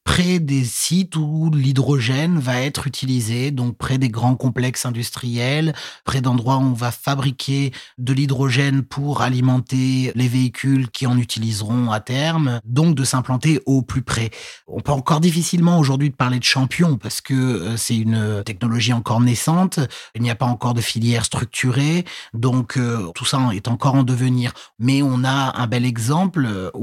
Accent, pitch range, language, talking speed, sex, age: French, 120-140 Hz, French, 165 wpm, male, 30-49